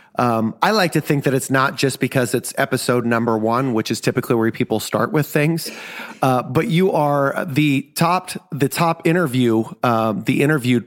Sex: male